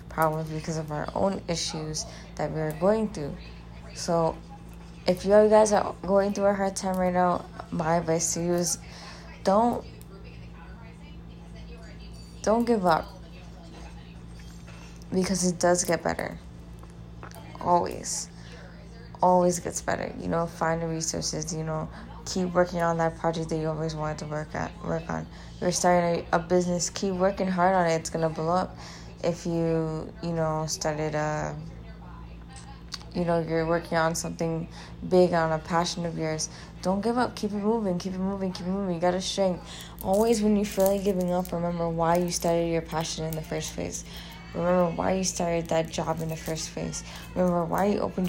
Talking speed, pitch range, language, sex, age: 175 wpm, 155-180 Hz, English, female, 20-39